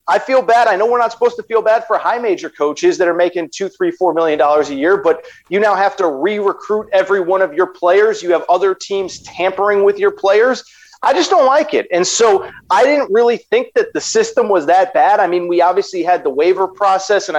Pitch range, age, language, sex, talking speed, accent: 175-225 Hz, 30-49, English, male, 240 wpm, American